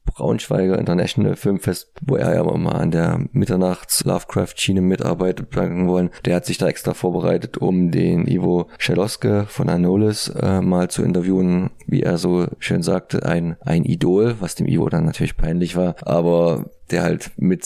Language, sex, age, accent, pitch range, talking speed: German, male, 20-39, German, 85-95 Hz, 165 wpm